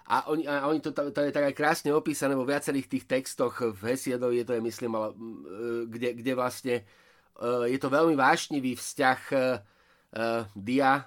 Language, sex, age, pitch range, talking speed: Slovak, male, 30-49, 120-140 Hz, 150 wpm